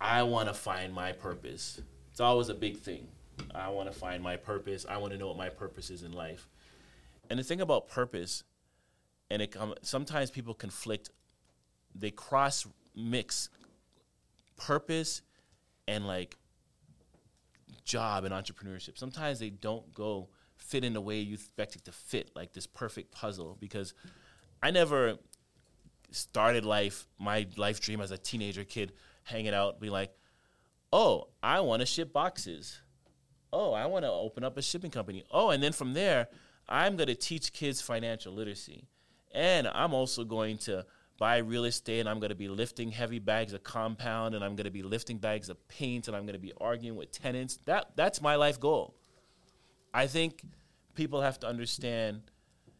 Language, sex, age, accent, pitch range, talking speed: English, male, 30-49, American, 95-125 Hz, 175 wpm